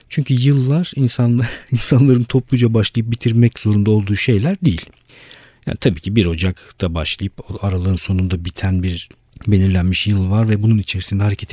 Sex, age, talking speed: male, 50-69, 145 wpm